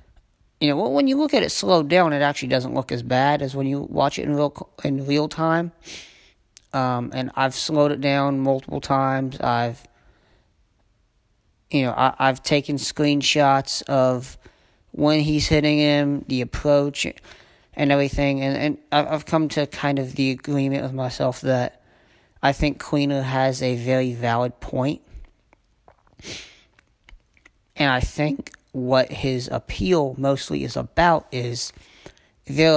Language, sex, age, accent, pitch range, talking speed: English, male, 30-49, American, 125-145 Hz, 145 wpm